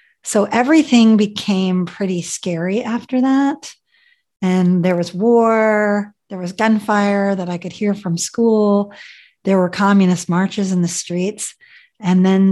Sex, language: female, English